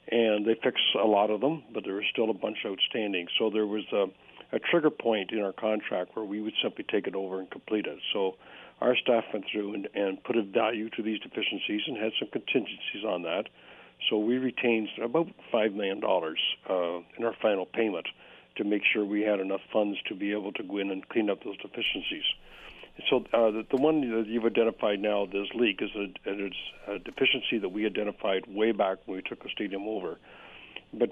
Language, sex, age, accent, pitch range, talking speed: English, male, 60-79, American, 100-115 Hz, 210 wpm